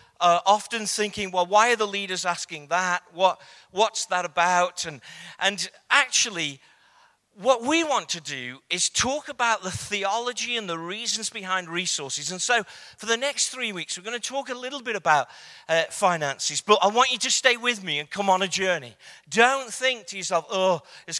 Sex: male